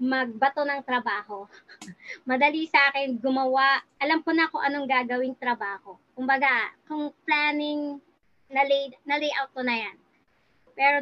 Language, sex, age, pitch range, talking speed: Filipino, male, 20-39, 240-295 Hz, 125 wpm